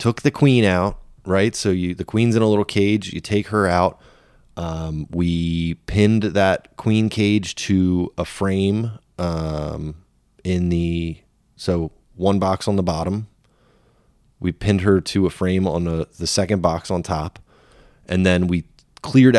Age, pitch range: 20-39, 90-110 Hz